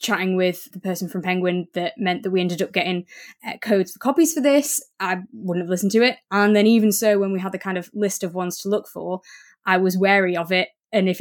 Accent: British